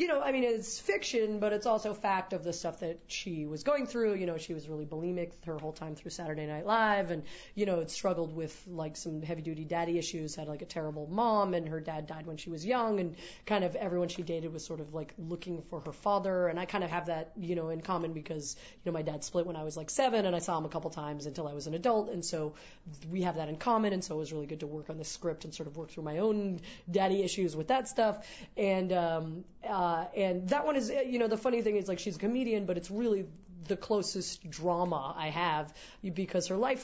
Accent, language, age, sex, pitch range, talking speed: American, English, 30-49, female, 160-200 Hz, 260 wpm